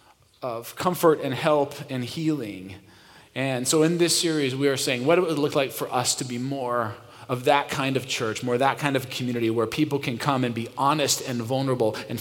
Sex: male